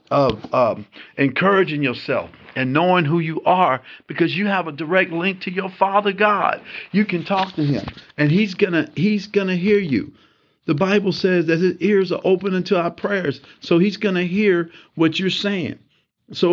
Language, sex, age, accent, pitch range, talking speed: English, male, 50-69, American, 130-185 Hz, 180 wpm